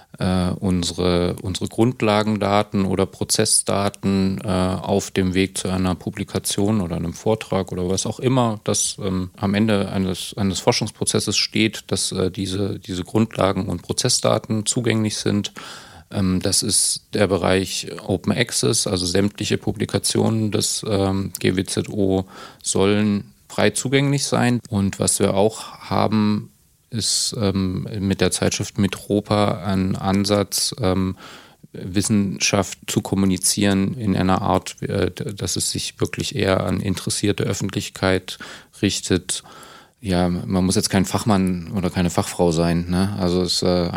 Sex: male